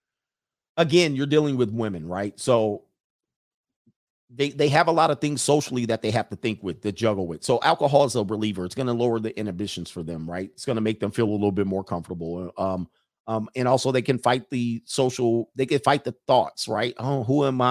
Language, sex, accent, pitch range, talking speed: English, male, American, 110-140 Hz, 225 wpm